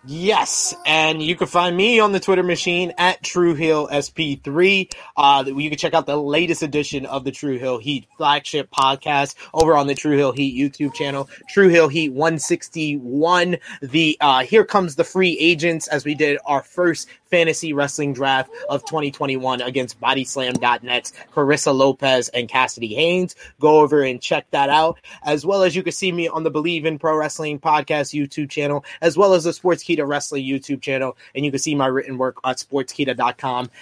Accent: American